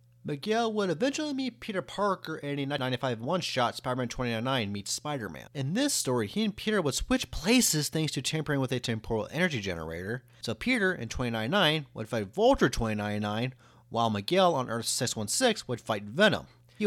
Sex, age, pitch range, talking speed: male, 30-49, 120-175 Hz, 165 wpm